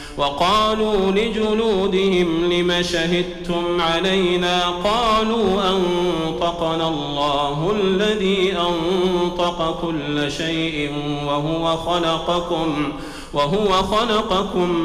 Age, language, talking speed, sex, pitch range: 40-59, Arabic, 60 wpm, male, 160-195 Hz